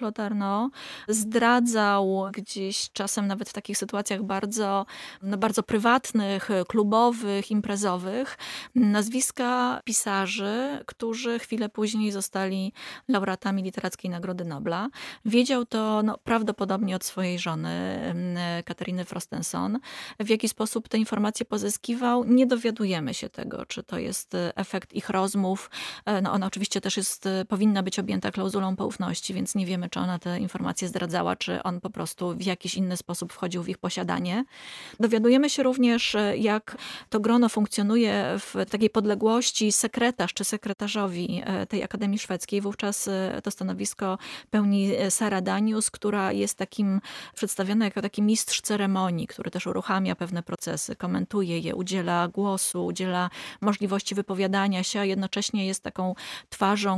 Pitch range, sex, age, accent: 190-220 Hz, female, 20-39, native